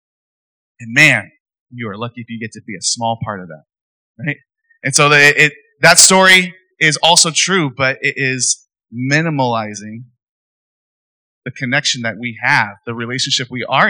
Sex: male